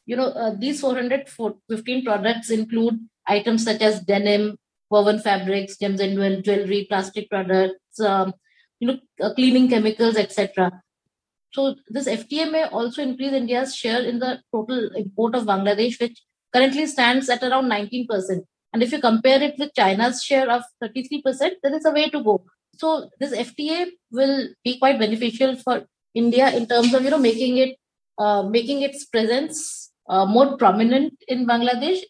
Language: English